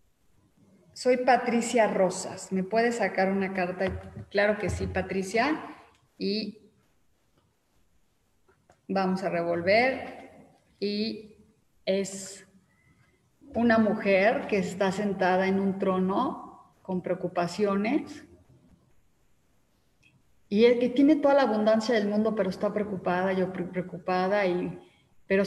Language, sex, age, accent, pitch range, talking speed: Spanish, female, 30-49, Mexican, 190-220 Hz, 105 wpm